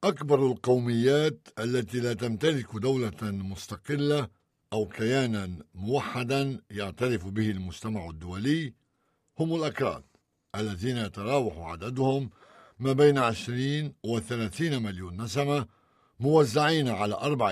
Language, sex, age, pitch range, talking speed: Arabic, male, 60-79, 100-135 Hz, 95 wpm